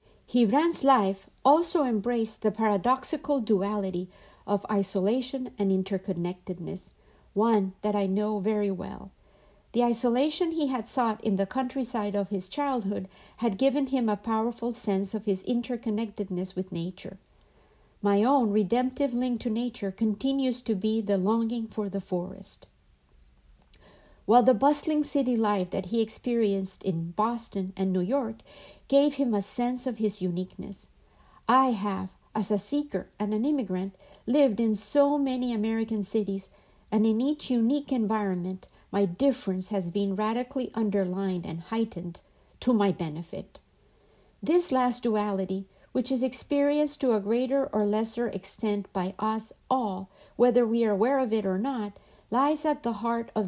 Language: Spanish